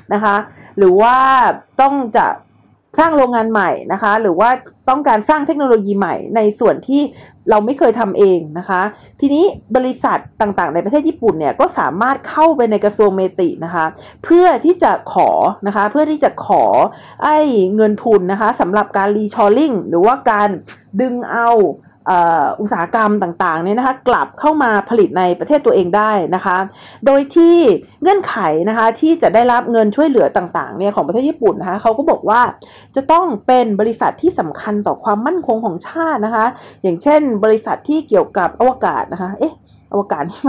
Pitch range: 210-290 Hz